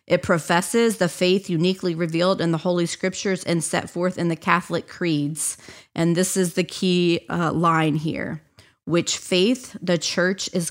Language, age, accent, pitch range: English, 30-49, American, 155-180 Hz